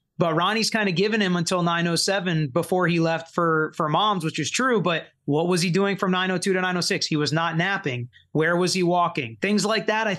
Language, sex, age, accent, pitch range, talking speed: English, male, 30-49, American, 165-195 Hz, 225 wpm